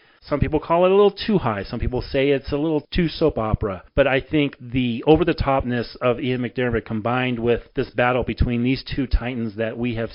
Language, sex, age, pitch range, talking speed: English, male, 40-59, 115-145 Hz, 215 wpm